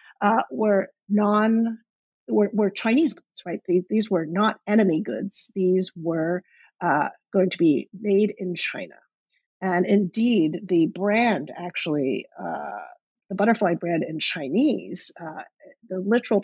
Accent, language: American, English